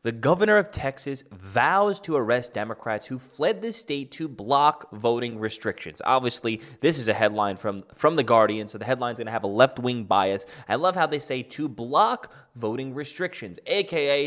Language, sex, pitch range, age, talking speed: English, male, 110-140 Hz, 20-39, 185 wpm